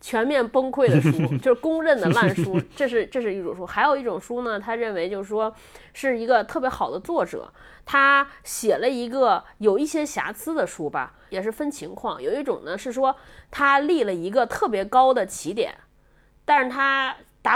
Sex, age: female, 20-39